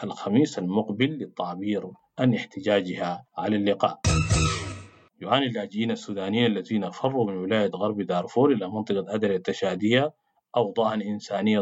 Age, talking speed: 50-69, 115 wpm